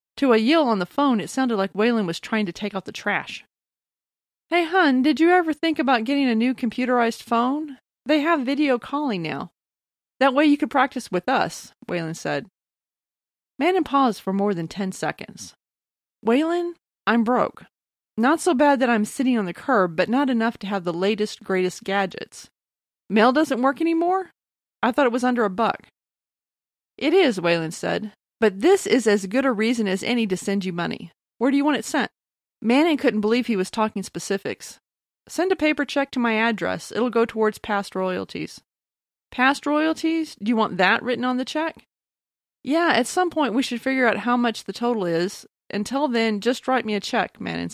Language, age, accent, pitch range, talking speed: English, 30-49, American, 200-280 Hz, 195 wpm